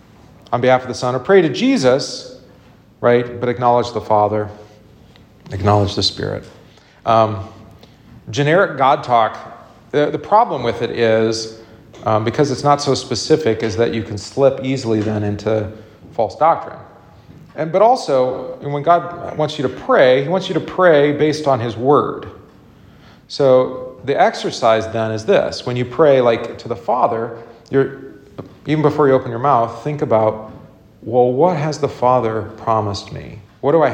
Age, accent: 40-59, American